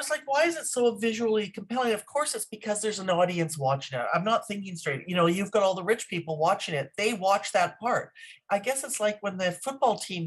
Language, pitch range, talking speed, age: English, 160-215 Hz, 245 wpm, 50-69